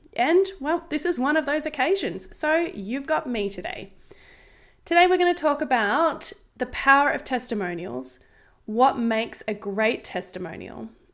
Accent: Australian